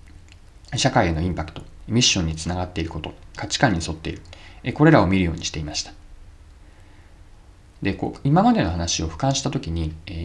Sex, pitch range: male, 80-130 Hz